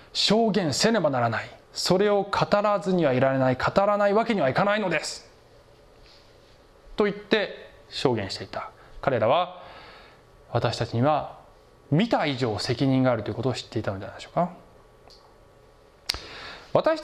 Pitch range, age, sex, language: 115-185 Hz, 20-39, male, Japanese